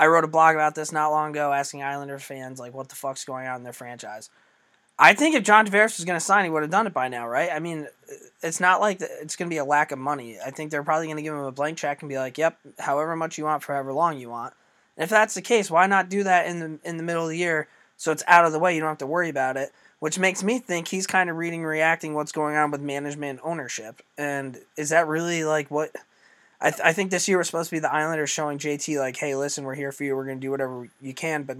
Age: 20-39